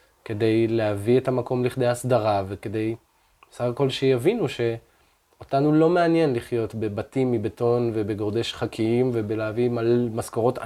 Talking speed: 115 wpm